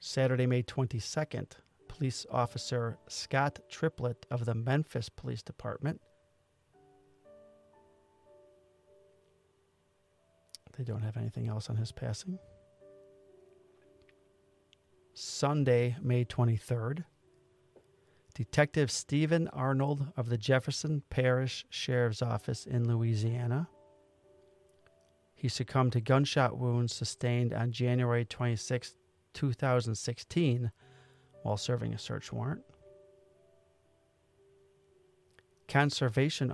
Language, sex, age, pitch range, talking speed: English, male, 40-59, 110-135 Hz, 80 wpm